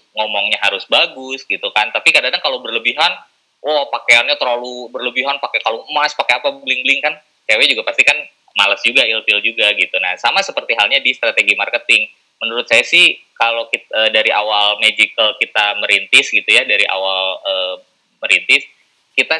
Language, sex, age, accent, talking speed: English, male, 20-39, Indonesian, 165 wpm